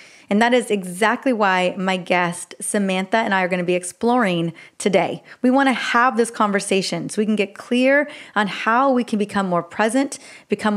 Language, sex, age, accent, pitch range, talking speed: English, female, 30-49, American, 190-235 Hz, 195 wpm